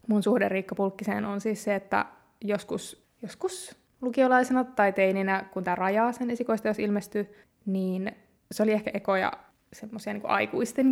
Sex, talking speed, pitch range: female, 155 wpm, 195-235 Hz